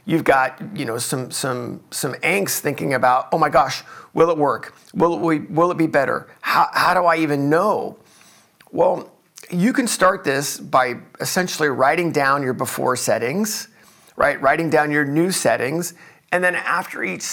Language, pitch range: English, 140-180 Hz